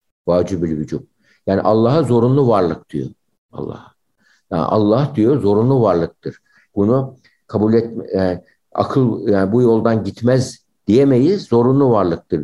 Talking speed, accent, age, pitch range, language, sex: 115 wpm, native, 60-79, 105-130 Hz, Turkish, male